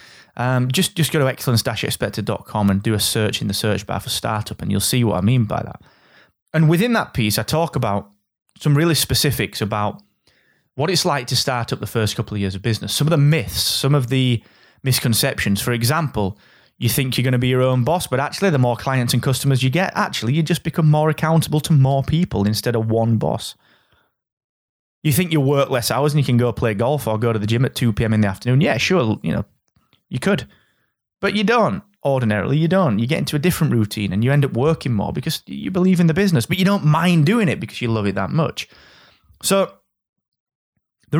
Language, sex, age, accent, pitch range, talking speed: English, male, 30-49, British, 110-155 Hz, 225 wpm